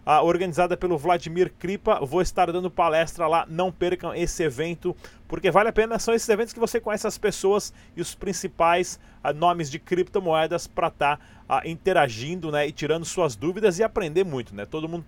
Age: 30-49